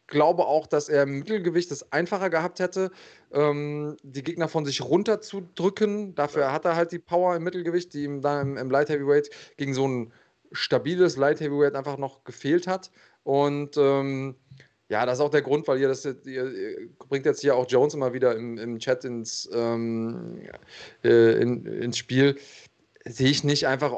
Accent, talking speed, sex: German, 185 wpm, male